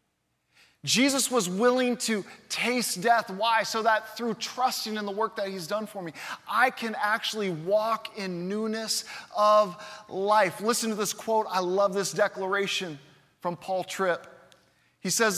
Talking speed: 155 wpm